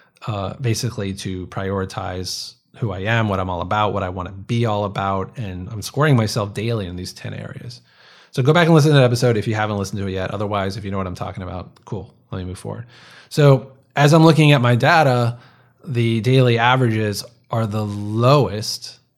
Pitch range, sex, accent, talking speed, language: 105-130 Hz, male, American, 215 wpm, English